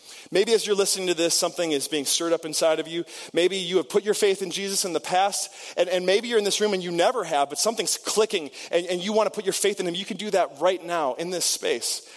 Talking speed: 285 wpm